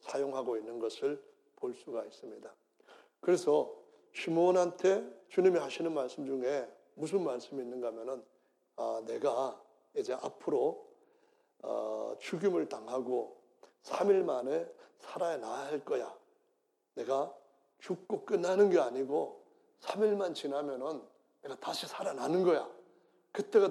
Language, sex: Korean, male